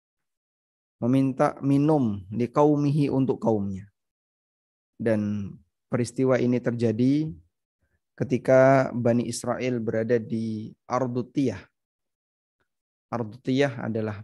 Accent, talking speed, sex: native, 75 wpm, male